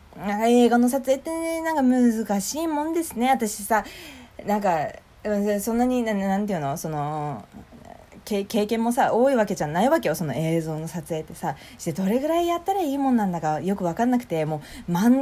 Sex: female